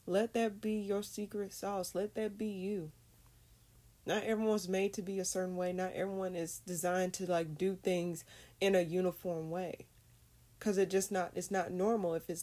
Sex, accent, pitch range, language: female, American, 165-210 Hz, English